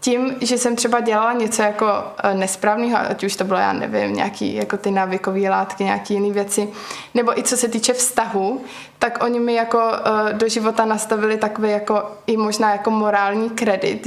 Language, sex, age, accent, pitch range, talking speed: Czech, female, 20-39, native, 200-225 Hz, 190 wpm